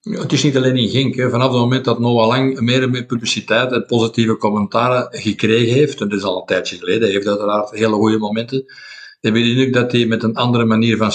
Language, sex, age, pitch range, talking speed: Dutch, male, 50-69, 110-125 Hz, 235 wpm